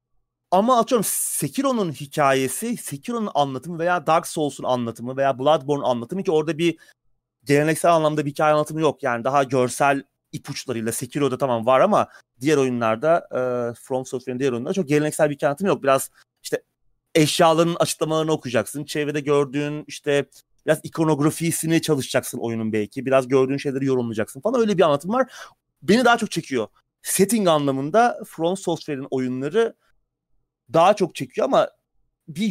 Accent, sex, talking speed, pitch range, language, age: native, male, 140 wpm, 130-170 Hz, Turkish, 30-49